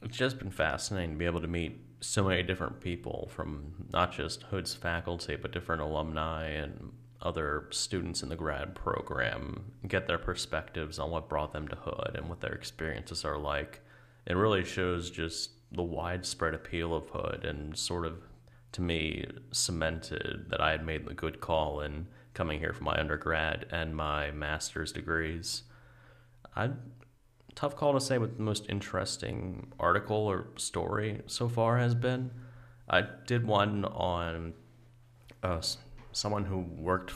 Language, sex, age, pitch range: English, male, 30-49, 80-105 Hz